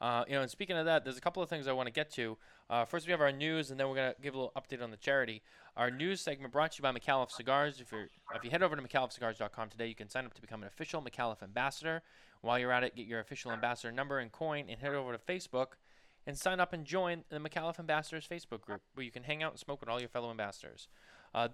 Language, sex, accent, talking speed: English, male, American, 285 wpm